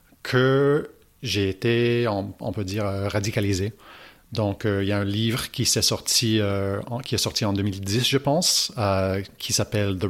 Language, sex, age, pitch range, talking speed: French, male, 40-59, 100-115 Hz, 170 wpm